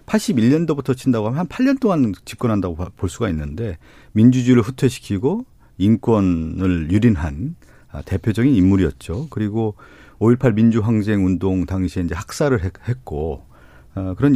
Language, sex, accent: Korean, male, native